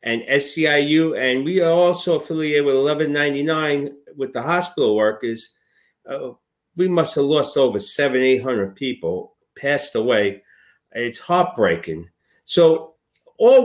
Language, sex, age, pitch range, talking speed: English, male, 50-69, 120-165 Hz, 130 wpm